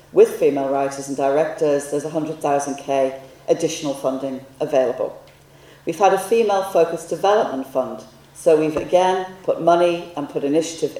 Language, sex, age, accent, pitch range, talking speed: English, female, 40-59, British, 140-175 Hz, 130 wpm